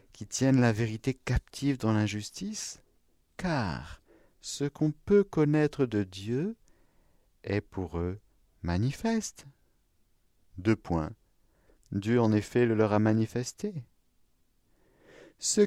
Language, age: French, 50-69